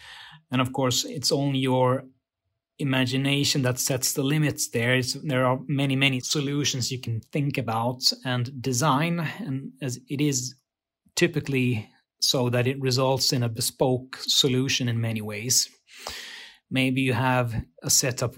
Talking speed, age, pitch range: 145 wpm, 30-49, 125-140 Hz